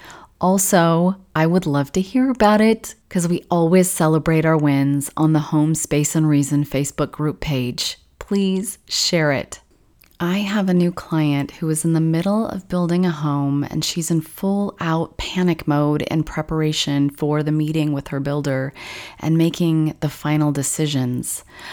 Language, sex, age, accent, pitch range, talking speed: English, female, 30-49, American, 150-180 Hz, 165 wpm